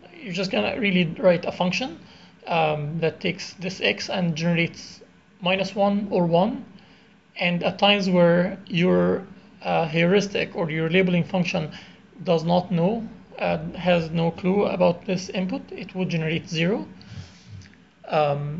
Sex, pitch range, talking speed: male, 170-195 Hz, 140 wpm